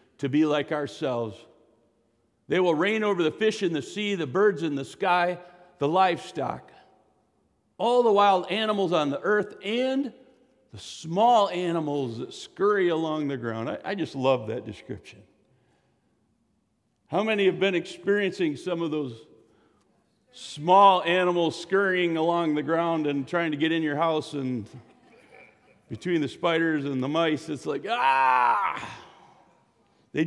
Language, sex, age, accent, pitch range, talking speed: English, male, 50-69, American, 145-200 Hz, 145 wpm